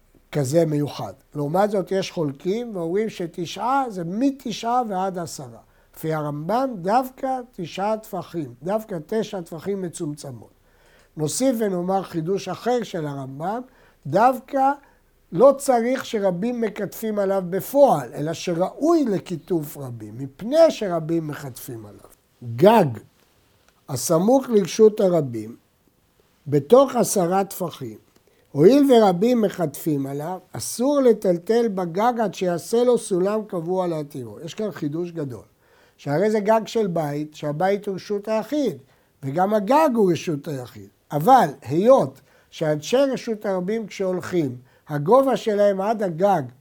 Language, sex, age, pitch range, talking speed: Hebrew, male, 60-79, 150-225 Hz, 115 wpm